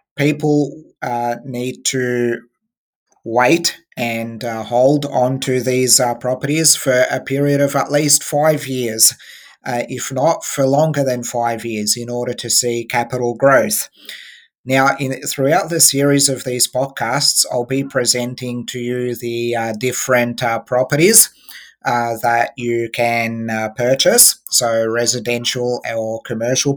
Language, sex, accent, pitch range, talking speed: English, male, Australian, 120-140 Hz, 135 wpm